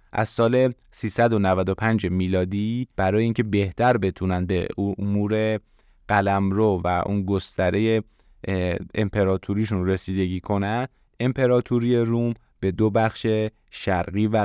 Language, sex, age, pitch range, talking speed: Persian, male, 30-49, 95-110 Hz, 105 wpm